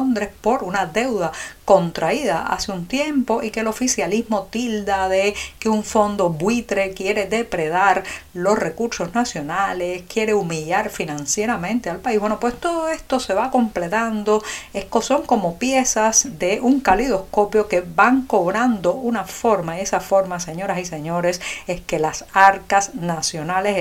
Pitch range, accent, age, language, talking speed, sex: 180-230 Hz, American, 50-69, Spanish, 145 wpm, female